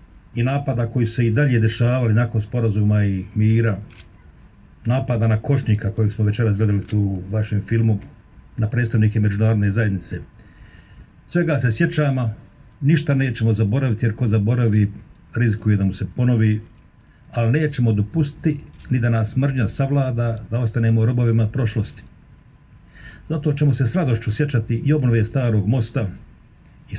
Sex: male